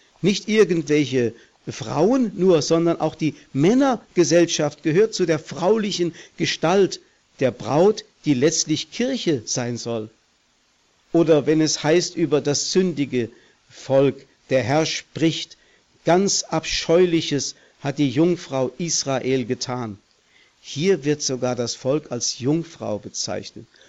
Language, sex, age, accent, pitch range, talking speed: German, male, 50-69, German, 135-180 Hz, 115 wpm